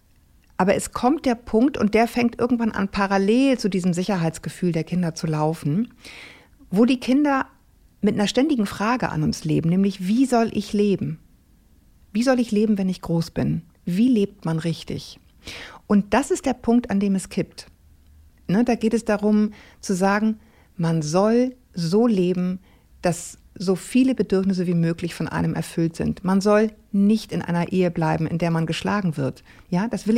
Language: German